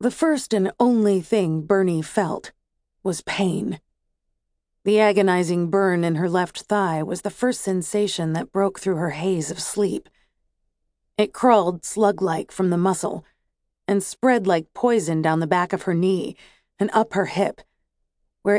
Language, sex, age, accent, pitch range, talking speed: English, female, 30-49, American, 165-210 Hz, 155 wpm